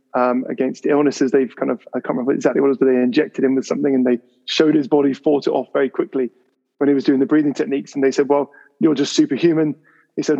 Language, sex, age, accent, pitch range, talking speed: English, male, 20-39, British, 135-170 Hz, 260 wpm